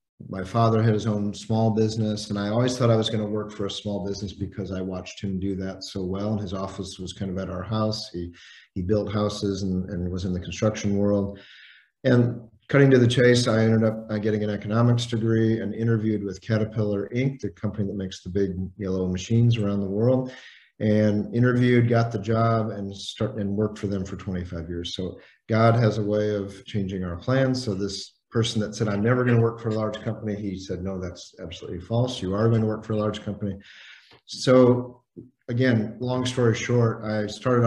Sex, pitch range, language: male, 100-115 Hz, English